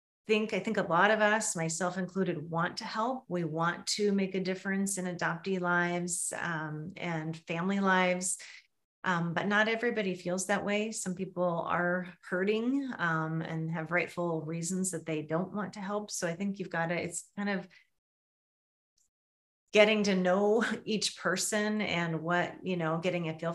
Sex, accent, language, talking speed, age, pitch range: female, American, English, 175 wpm, 30-49, 165-195 Hz